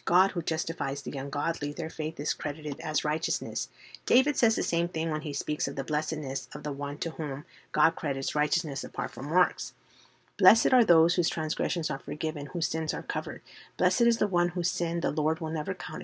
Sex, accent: female, American